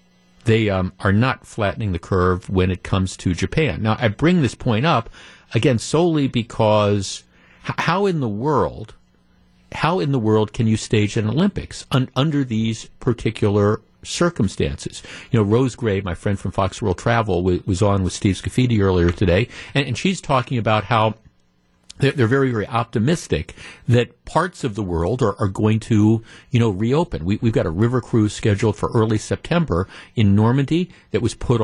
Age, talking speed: 50-69, 180 wpm